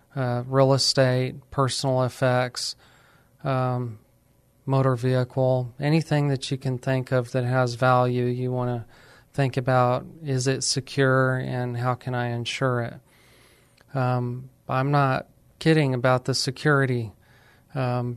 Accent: American